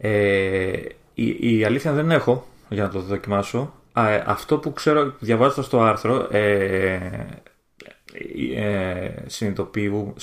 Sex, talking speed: male, 125 wpm